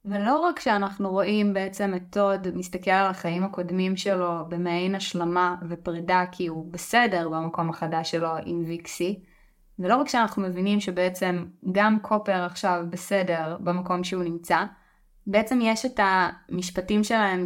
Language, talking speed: Hebrew, 140 wpm